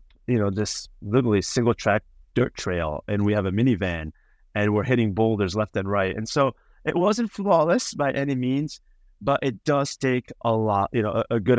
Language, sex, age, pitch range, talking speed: English, male, 30-49, 100-135 Hz, 195 wpm